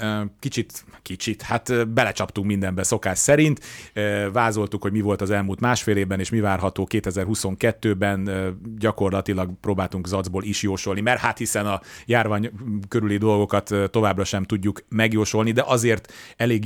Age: 30-49